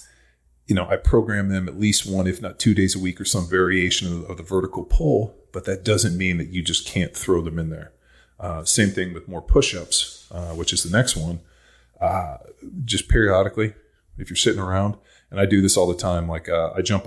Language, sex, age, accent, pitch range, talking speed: English, male, 30-49, American, 85-95 Hz, 225 wpm